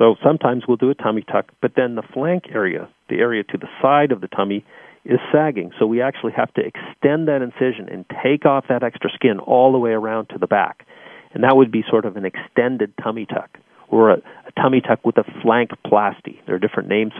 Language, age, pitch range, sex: English, 40-59, 105-130 Hz, male